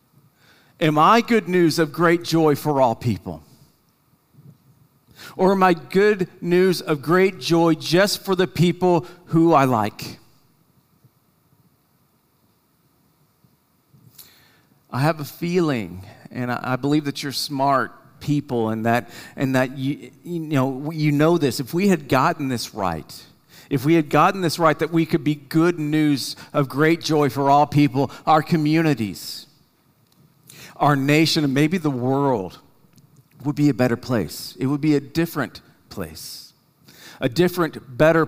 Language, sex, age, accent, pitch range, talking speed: English, male, 50-69, American, 135-160 Hz, 145 wpm